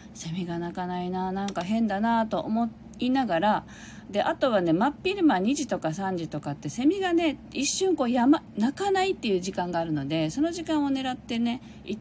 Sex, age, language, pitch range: female, 40-59, Japanese, 145-215 Hz